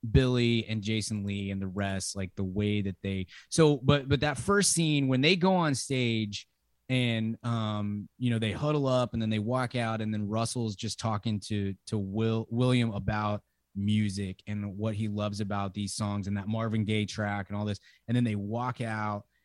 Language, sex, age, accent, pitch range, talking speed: English, male, 20-39, American, 100-125 Hz, 205 wpm